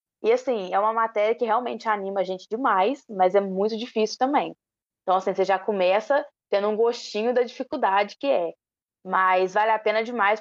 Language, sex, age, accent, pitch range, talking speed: Portuguese, female, 20-39, Brazilian, 195-250 Hz, 190 wpm